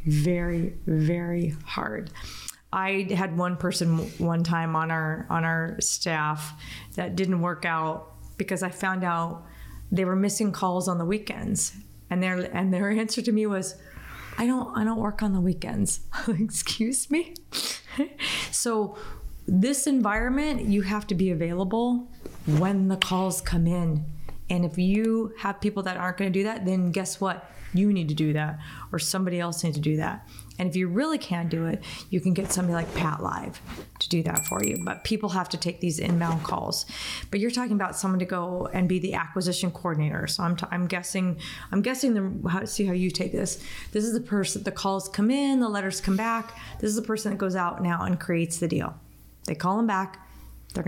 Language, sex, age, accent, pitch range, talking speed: English, female, 30-49, American, 170-205 Hz, 200 wpm